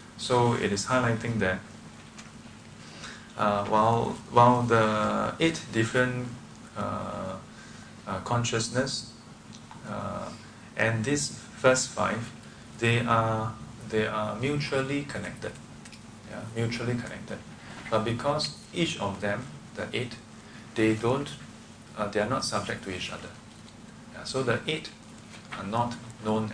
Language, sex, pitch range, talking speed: English, male, 105-120 Hz, 120 wpm